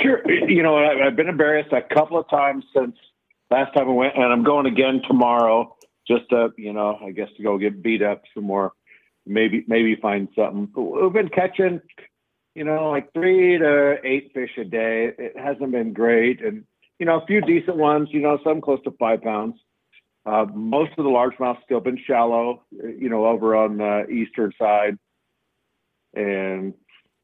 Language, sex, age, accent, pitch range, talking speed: English, male, 50-69, American, 110-145 Hz, 180 wpm